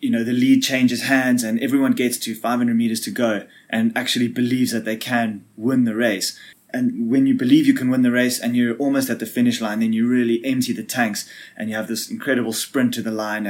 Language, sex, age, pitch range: English, male, 20-39, 110-130 Hz